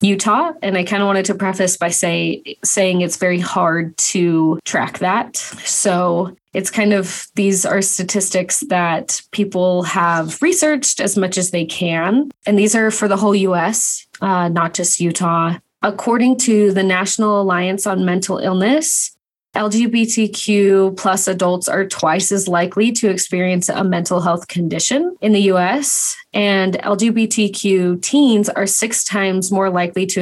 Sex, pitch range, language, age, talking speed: female, 180-205 Hz, English, 20-39, 155 wpm